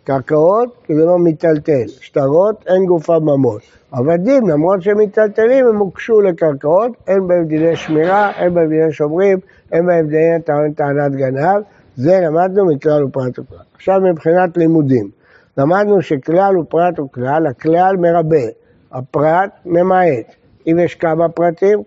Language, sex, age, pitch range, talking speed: Hebrew, male, 60-79, 150-200 Hz, 125 wpm